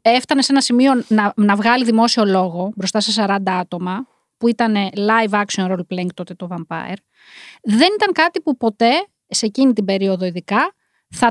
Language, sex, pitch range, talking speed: Greek, female, 200-275 Hz, 165 wpm